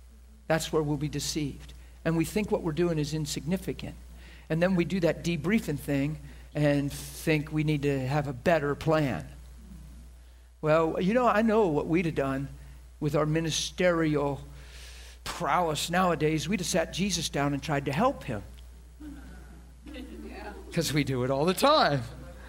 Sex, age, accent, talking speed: male, 50-69, American, 160 wpm